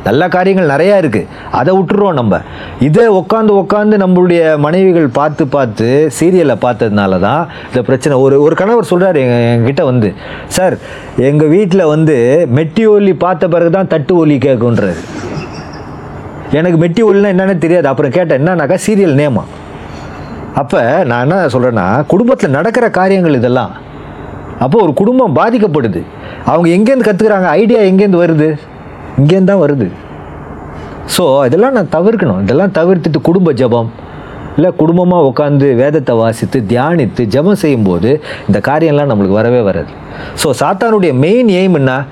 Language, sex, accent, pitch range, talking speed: Tamil, male, native, 130-190 Hz, 130 wpm